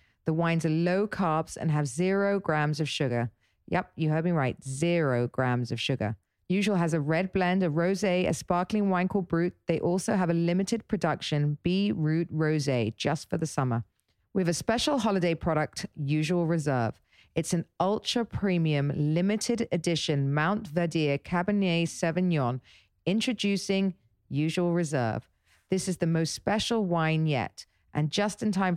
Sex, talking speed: female, 155 wpm